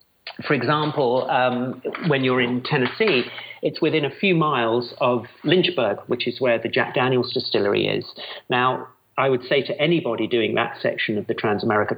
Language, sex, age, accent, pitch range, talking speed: English, male, 40-59, British, 115-135 Hz, 175 wpm